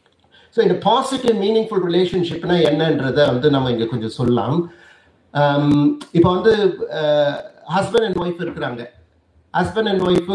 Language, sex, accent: Tamil, male, native